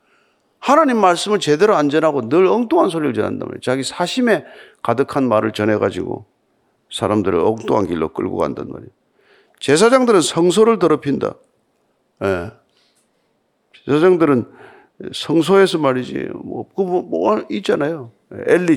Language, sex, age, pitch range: Korean, male, 50-69, 125-205 Hz